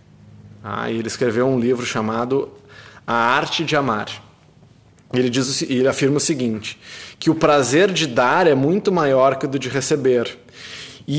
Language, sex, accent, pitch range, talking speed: Portuguese, male, Brazilian, 115-150 Hz, 150 wpm